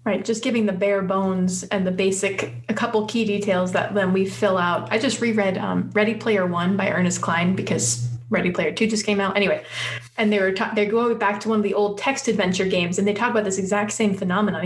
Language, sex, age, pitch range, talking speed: English, female, 30-49, 185-210 Hz, 245 wpm